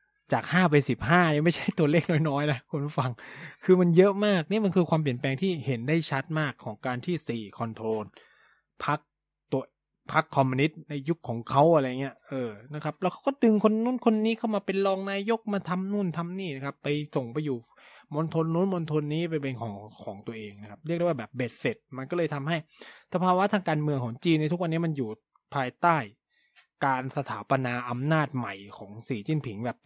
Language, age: Thai, 20-39